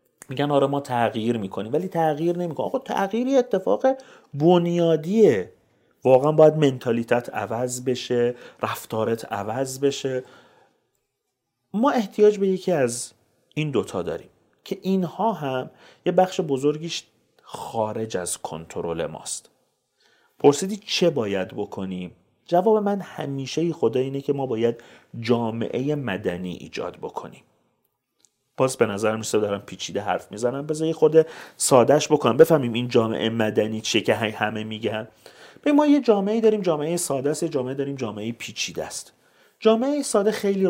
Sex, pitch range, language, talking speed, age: male, 115-175 Hz, Persian, 135 wpm, 40-59